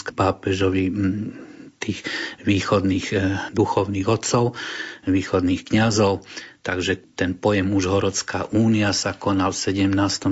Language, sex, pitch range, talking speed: Slovak, male, 95-110 Hz, 100 wpm